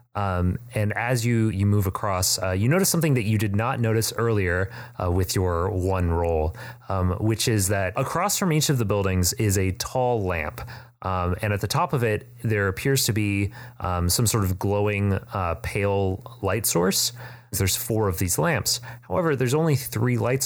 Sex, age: male, 30-49